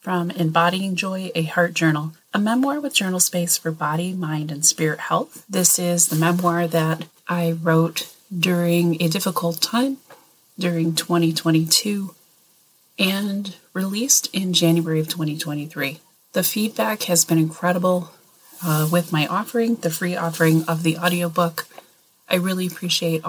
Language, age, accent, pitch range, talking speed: English, 30-49, American, 165-185 Hz, 140 wpm